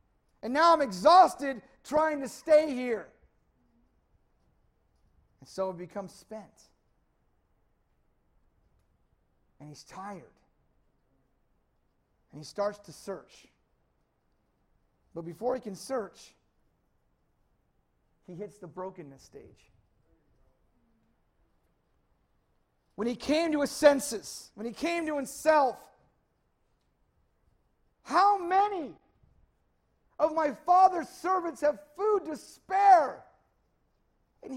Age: 50-69